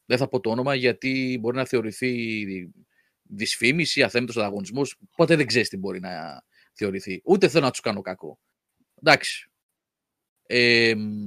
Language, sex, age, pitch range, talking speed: Greek, male, 30-49, 115-170 Hz, 145 wpm